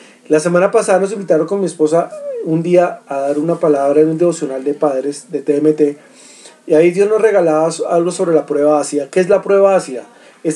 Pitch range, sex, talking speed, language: 150-190 Hz, male, 210 wpm, Spanish